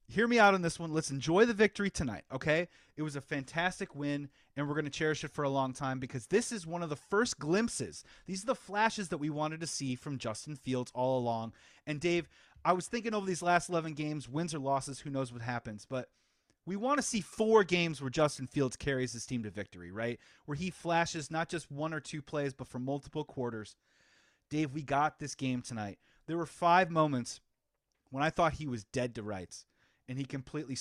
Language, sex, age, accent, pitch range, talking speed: English, male, 30-49, American, 130-175 Hz, 225 wpm